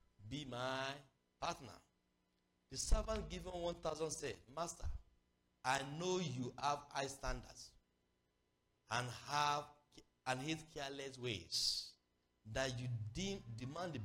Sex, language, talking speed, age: male, English, 110 wpm, 60-79